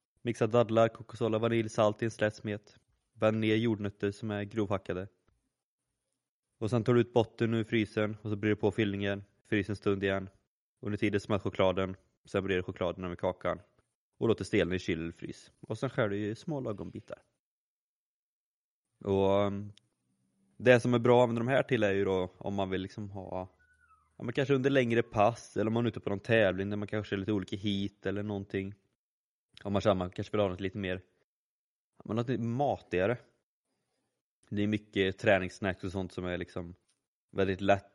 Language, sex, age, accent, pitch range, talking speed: Swedish, male, 20-39, native, 95-110 Hz, 185 wpm